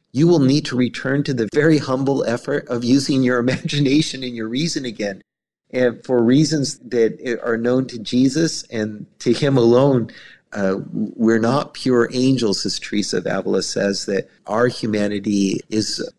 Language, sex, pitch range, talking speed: English, male, 105-130 Hz, 165 wpm